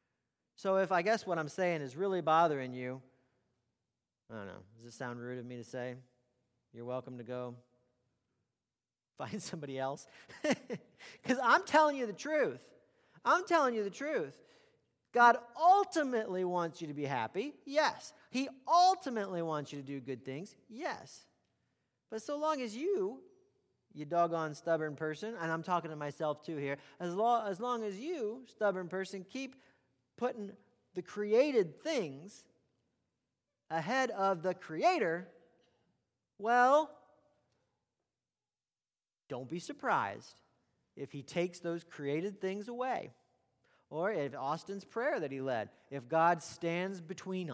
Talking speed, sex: 140 wpm, male